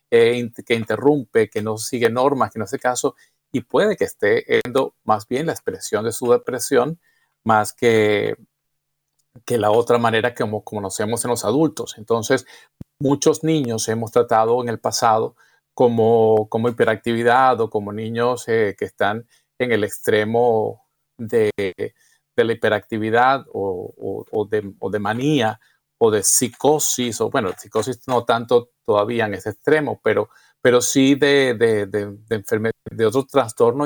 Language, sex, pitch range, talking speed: Spanish, male, 110-140 Hz, 155 wpm